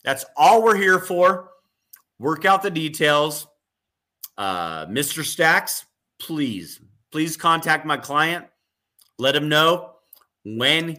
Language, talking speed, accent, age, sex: English, 115 wpm, American, 30-49, male